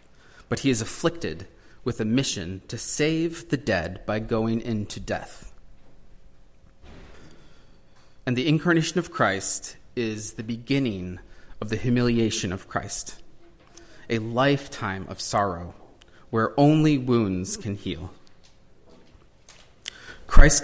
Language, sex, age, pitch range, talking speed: English, male, 30-49, 100-140 Hz, 110 wpm